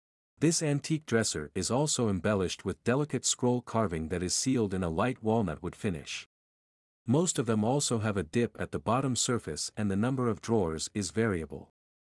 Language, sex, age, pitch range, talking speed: English, male, 50-69, 90-125 Hz, 185 wpm